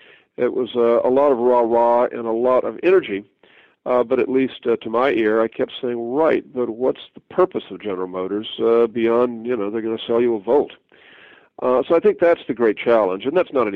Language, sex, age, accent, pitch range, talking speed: English, male, 50-69, American, 105-130 Hz, 230 wpm